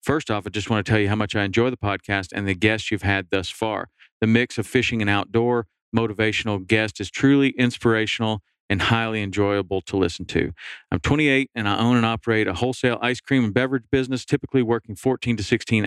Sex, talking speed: male, 215 wpm